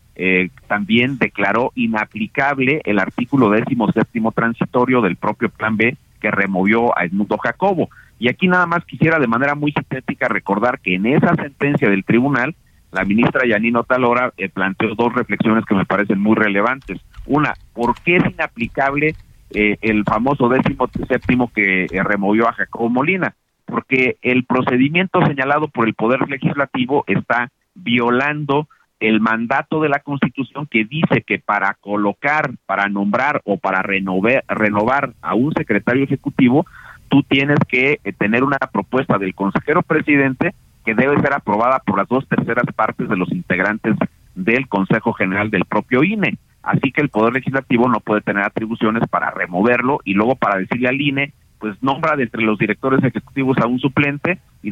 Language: Spanish